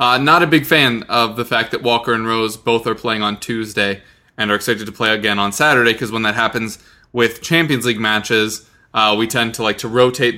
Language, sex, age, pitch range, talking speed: English, male, 20-39, 110-125 Hz, 230 wpm